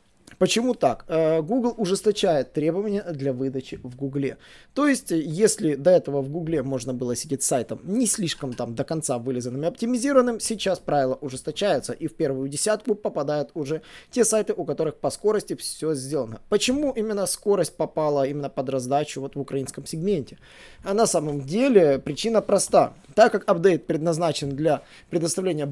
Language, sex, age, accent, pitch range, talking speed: Russian, male, 20-39, native, 140-200 Hz, 160 wpm